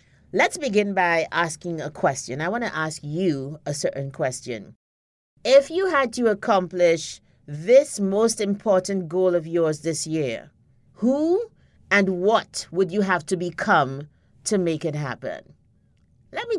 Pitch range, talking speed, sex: 175-225 Hz, 145 wpm, female